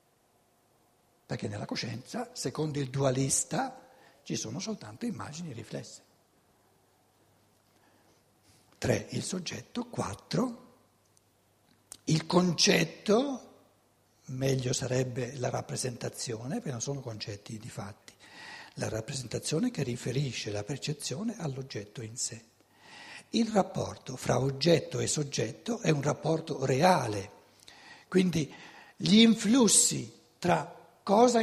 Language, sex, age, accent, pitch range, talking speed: Italian, male, 60-79, native, 135-220 Hz, 95 wpm